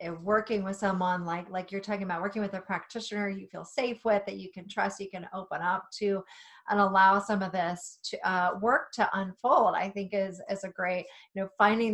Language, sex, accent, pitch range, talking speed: English, female, American, 185-230 Hz, 220 wpm